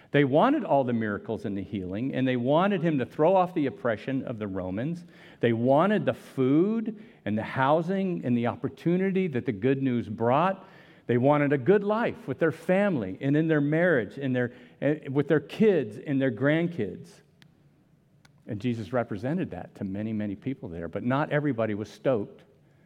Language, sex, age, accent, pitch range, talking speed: English, male, 50-69, American, 120-165 Hz, 185 wpm